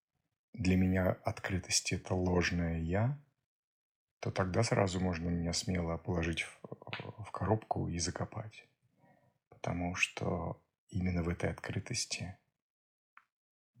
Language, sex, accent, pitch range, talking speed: Russian, male, native, 90-110 Hz, 105 wpm